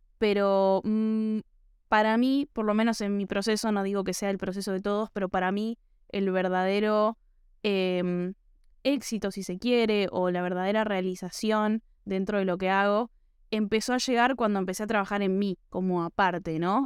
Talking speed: 170 wpm